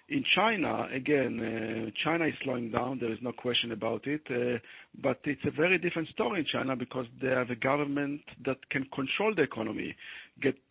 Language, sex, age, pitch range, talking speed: English, male, 50-69, 120-145 Hz, 190 wpm